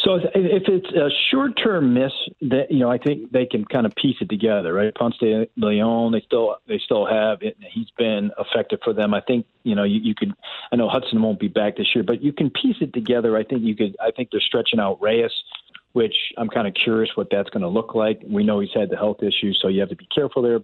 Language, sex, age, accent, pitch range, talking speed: English, male, 40-59, American, 105-145 Hz, 260 wpm